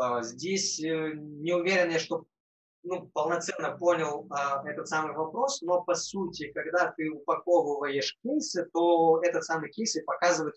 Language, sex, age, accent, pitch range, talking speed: Russian, male, 20-39, native, 155-180 Hz, 135 wpm